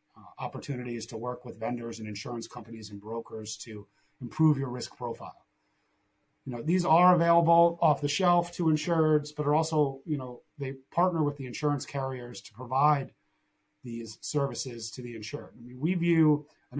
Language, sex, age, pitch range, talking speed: English, male, 30-49, 115-150 Hz, 175 wpm